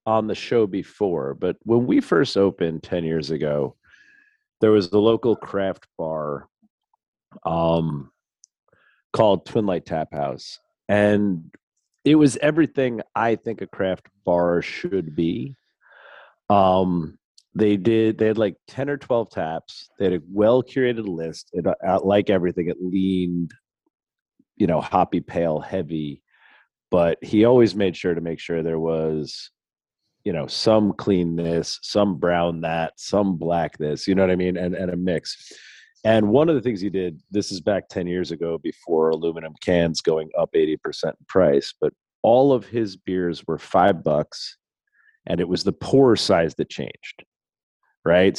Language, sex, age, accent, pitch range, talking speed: English, male, 40-59, American, 80-110 Hz, 160 wpm